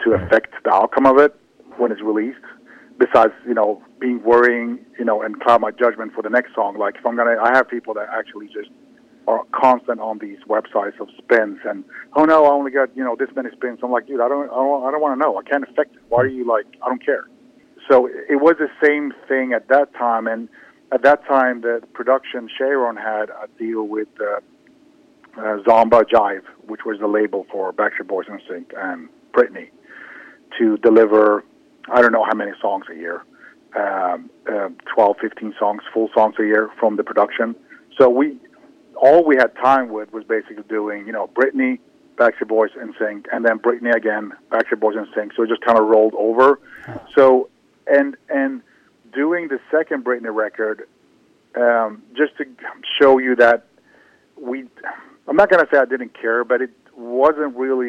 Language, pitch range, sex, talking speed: English, 110-145 Hz, male, 200 wpm